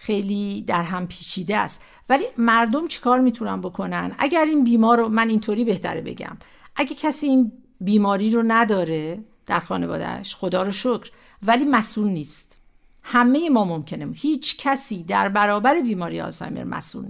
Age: 50-69